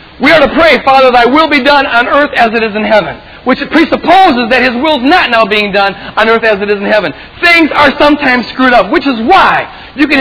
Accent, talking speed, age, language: American, 255 wpm, 40-59, English